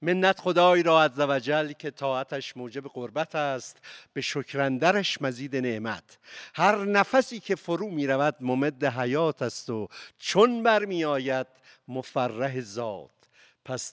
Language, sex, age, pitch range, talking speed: Persian, male, 60-79, 120-155 Hz, 120 wpm